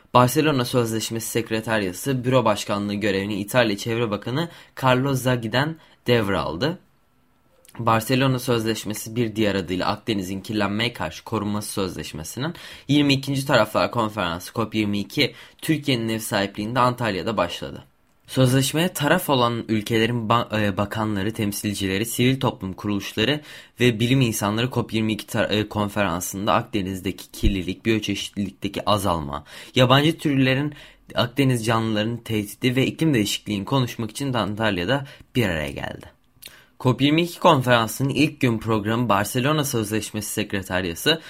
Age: 20-39